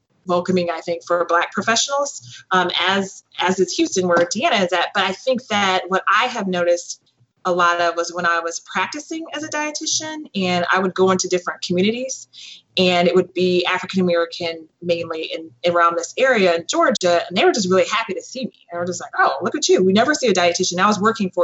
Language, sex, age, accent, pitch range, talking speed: English, female, 20-39, American, 170-210 Hz, 225 wpm